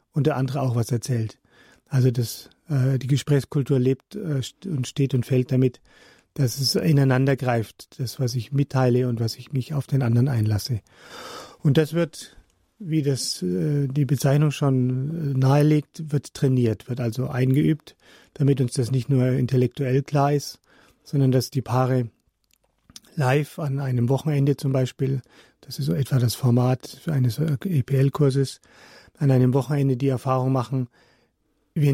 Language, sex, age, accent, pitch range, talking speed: German, male, 40-59, German, 125-145 Hz, 155 wpm